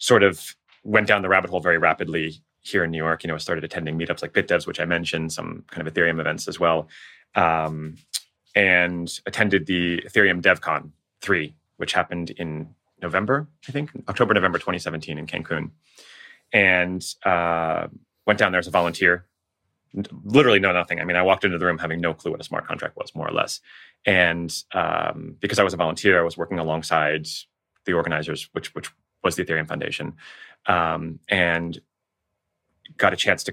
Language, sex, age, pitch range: English, male, 30-49, 80-95 Hz